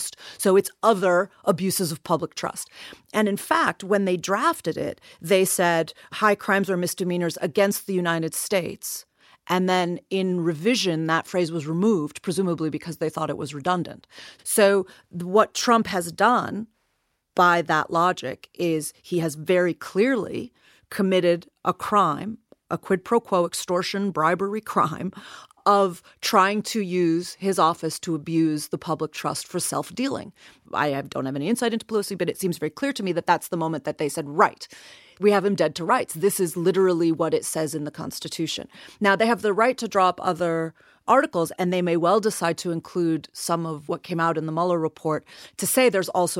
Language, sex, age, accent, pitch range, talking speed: English, female, 40-59, American, 160-195 Hz, 180 wpm